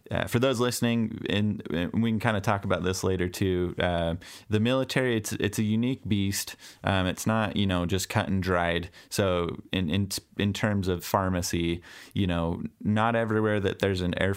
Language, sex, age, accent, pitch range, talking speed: English, male, 20-39, American, 90-105 Hz, 190 wpm